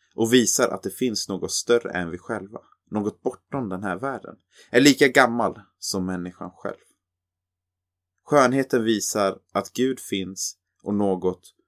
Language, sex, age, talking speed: Swedish, male, 30-49, 145 wpm